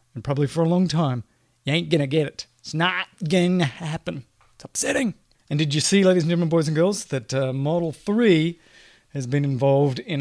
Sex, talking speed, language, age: male, 215 wpm, English, 30-49